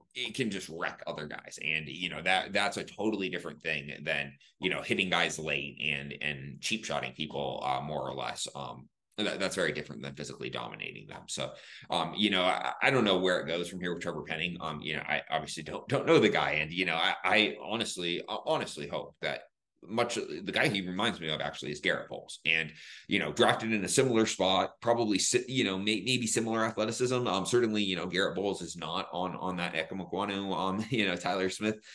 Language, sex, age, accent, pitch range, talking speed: English, male, 30-49, American, 85-110 Hz, 220 wpm